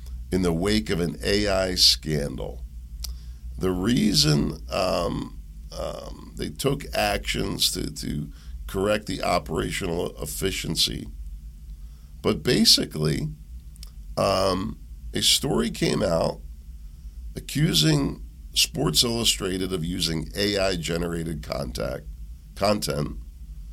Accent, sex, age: American, male, 50-69